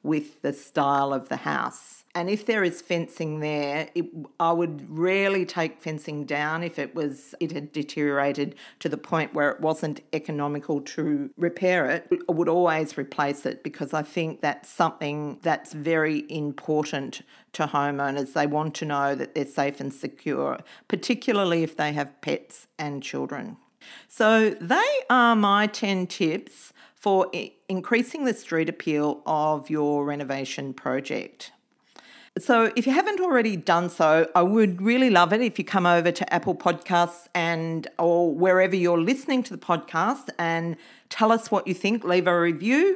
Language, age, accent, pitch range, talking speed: English, 40-59, Australian, 150-205 Hz, 160 wpm